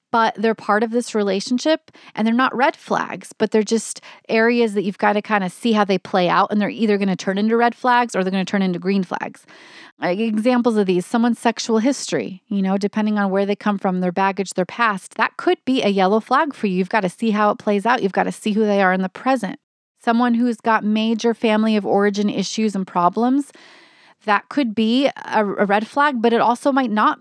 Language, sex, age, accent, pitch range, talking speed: English, female, 30-49, American, 195-240 Hz, 240 wpm